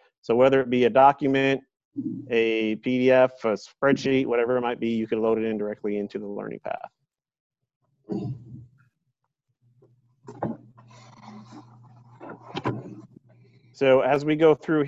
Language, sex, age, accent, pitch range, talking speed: English, male, 40-59, American, 120-135 Hz, 115 wpm